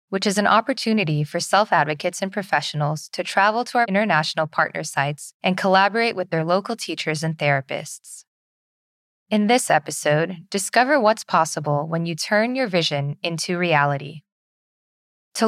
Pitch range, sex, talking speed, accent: 150-205 Hz, female, 145 wpm, American